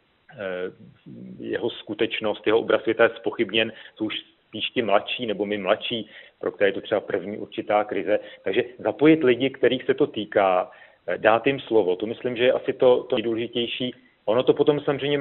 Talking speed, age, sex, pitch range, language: 180 wpm, 40-59, male, 105-140 Hz, Czech